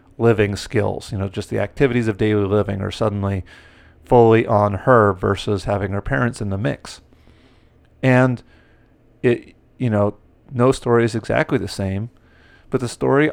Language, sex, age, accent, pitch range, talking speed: English, male, 40-59, American, 105-125 Hz, 160 wpm